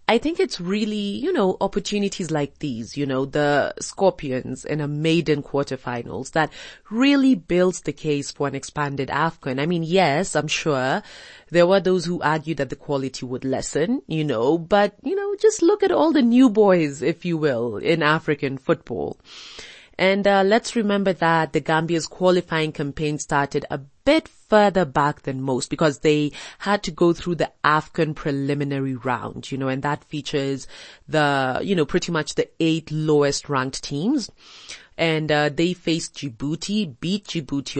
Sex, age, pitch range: female, 30-49, 140-190 Hz